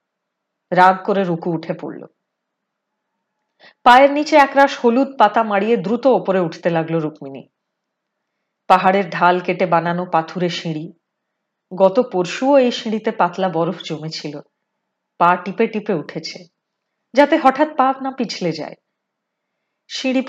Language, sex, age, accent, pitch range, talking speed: Hindi, female, 30-49, native, 175-245 Hz, 115 wpm